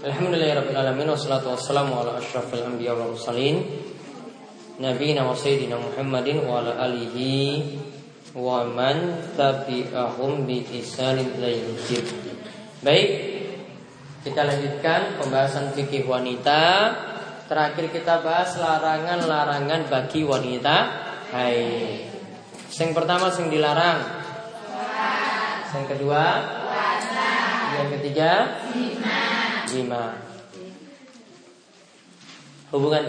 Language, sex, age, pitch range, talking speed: Malay, male, 20-39, 135-185 Hz, 85 wpm